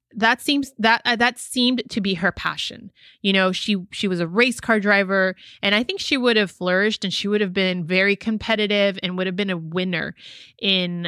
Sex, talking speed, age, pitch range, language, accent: female, 215 wpm, 20-39, 185-220 Hz, English, American